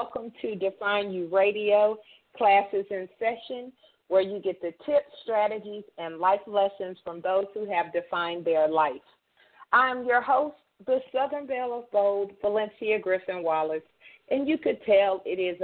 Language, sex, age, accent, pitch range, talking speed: English, female, 40-59, American, 175-225 Hz, 155 wpm